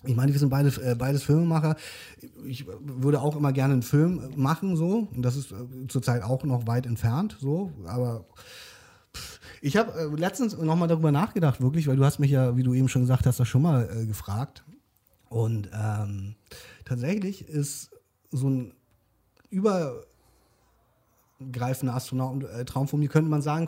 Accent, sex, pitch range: German, male, 125-150 Hz